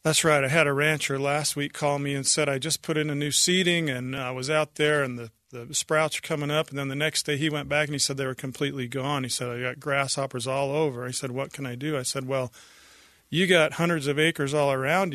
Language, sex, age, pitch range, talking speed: English, male, 40-59, 135-155 Hz, 275 wpm